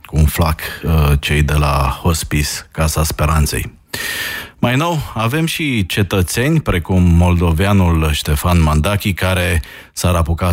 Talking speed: 120 wpm